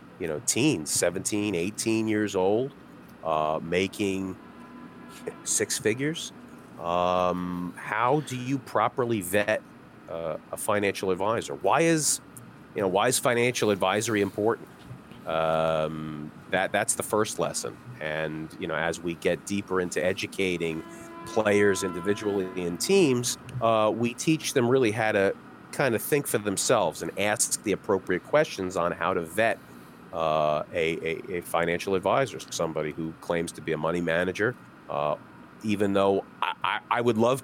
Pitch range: 85-110 Hz